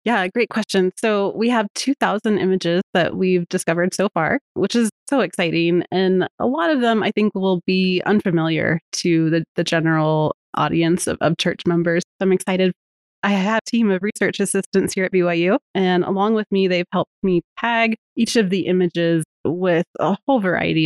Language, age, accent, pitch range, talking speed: English, 30-49, American, 170-205 Hz, 185 wpm